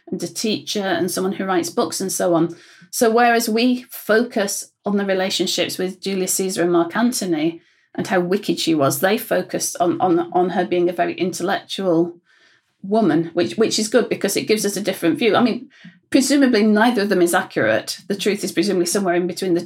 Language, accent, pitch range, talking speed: English, British, 180-230 Hz, 200 wpm